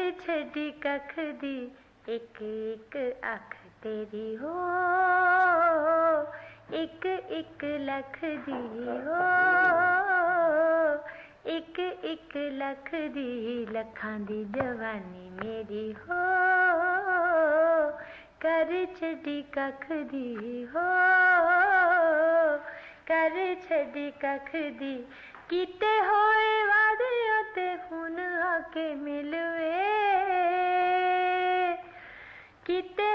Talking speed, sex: 50 wpm, female